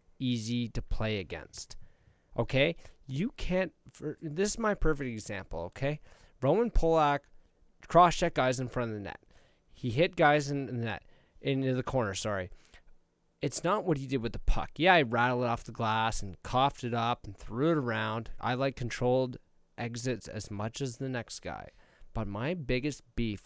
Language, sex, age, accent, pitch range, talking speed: English, male, 20-39, American, 110-150 Hz, 180 wpm